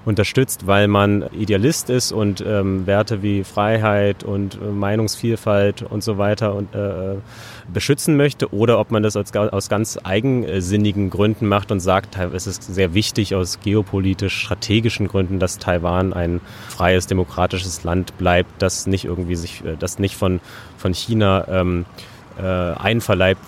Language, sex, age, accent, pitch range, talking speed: German, male, 30-49, German, 95-115 Hz, 135 wpm